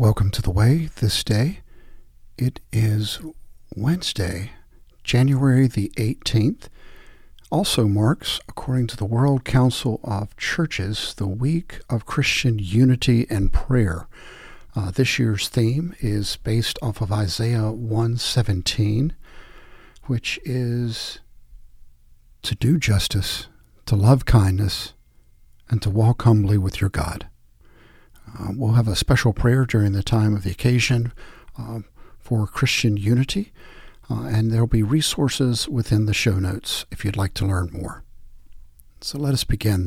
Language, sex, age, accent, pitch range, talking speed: English, male, 60-79, American, 95-120 Hz, 135 wpm